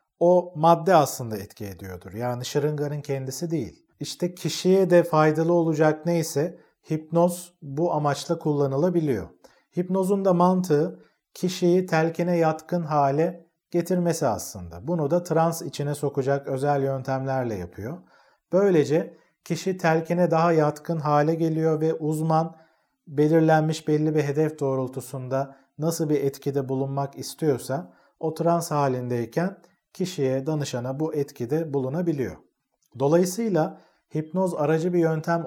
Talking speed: 115 wpm